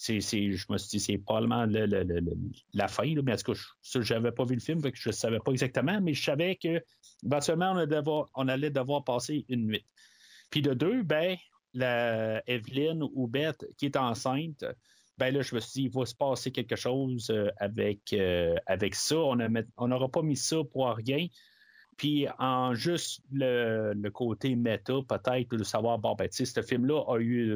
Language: French